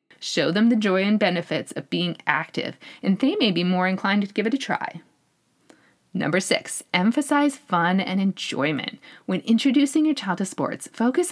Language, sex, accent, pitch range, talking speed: English, female, American, 175-245 Hz, 175 wpm